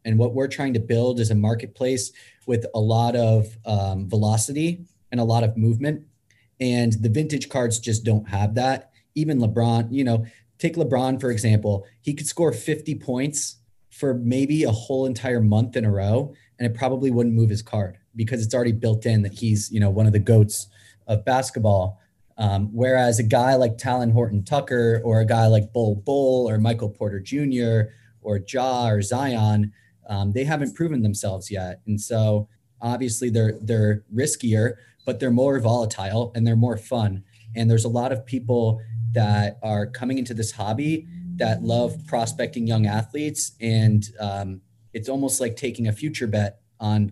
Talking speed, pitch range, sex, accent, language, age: 180 wpm, 110-125 Hz, male, American, English, 30-49